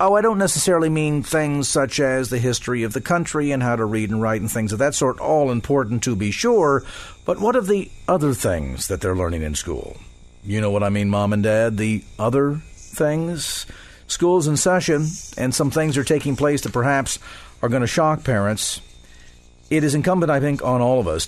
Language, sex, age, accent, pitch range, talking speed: English, male, 50-69, American, 115-155 Hz, 215 wpm